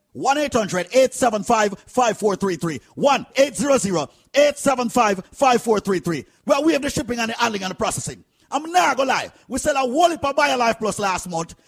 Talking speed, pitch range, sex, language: 150 wpm, 225-300 Hz, male, English